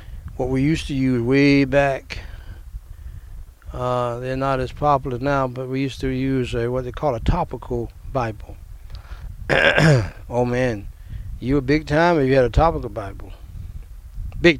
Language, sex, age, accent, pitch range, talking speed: English, male, 60-79, American, 90-135 Hz, 155 wpm